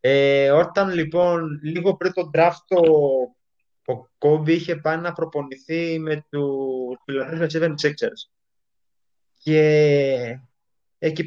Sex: male